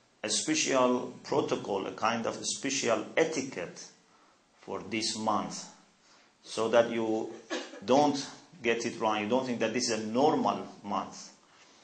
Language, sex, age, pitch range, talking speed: English, male, 50-69, 110-140 Hz, 135 wpm